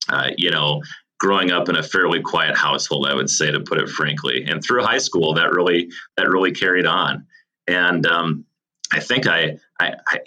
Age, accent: 30-49, American